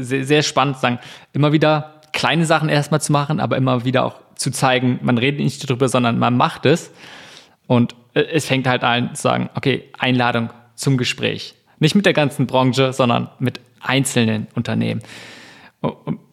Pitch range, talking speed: 125-150 Hz, 170 wpm